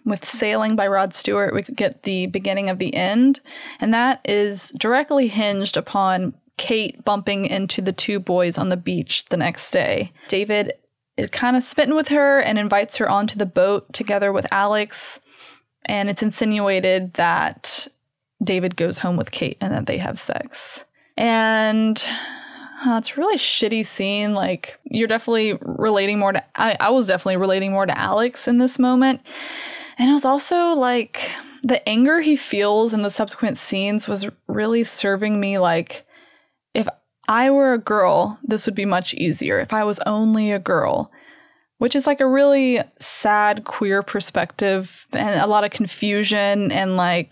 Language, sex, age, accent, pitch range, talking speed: English, female, 20-39, American, 195-255 Hz, 170 wpm